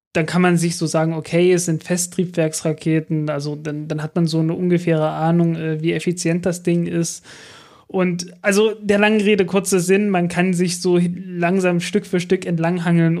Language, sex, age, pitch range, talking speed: German, male, 20-39, 160-185 Hz, 180 wpm